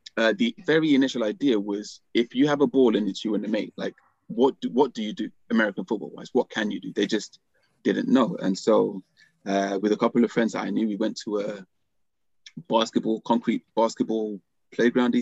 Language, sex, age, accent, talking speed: English, male, 20-39, British, 215 wpm